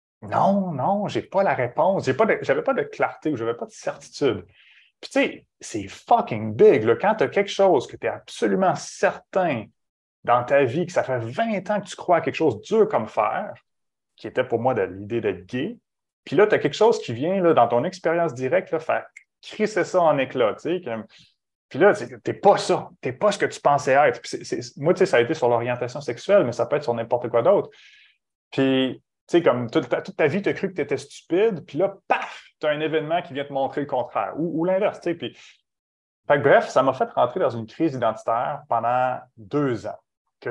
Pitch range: 115-165 Hz